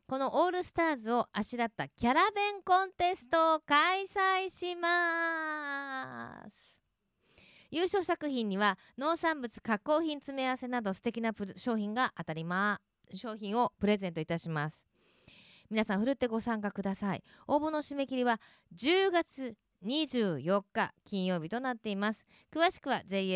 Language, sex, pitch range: Japanese, female, 190-290 Hz